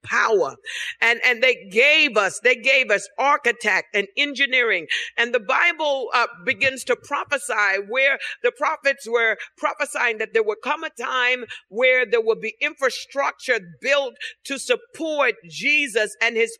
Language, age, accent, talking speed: English, 50-69, American, 150 wpm